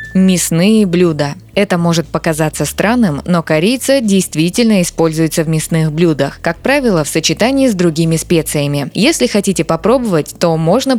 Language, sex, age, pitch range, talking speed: Russian, female, 20-39, 155-205 Hz, 135 wpm